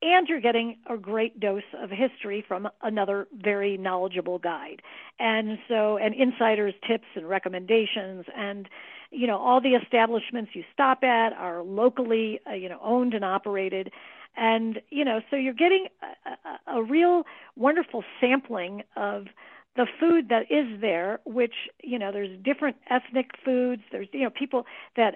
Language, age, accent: English, 50-69, American